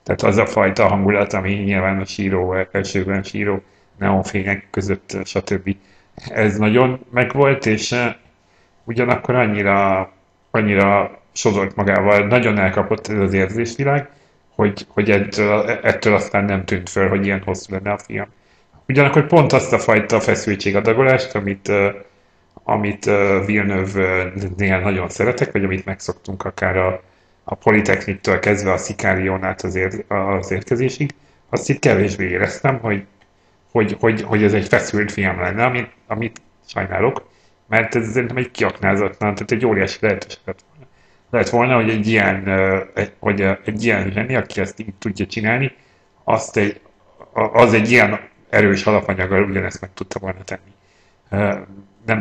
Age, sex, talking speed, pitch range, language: 30-49, male, 135 wpm, 95-110 Hz, English